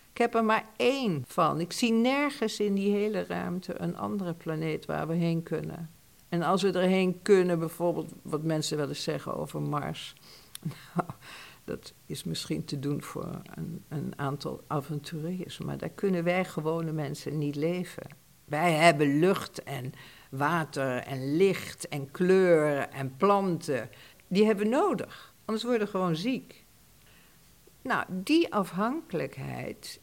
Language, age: Dutch, 60-79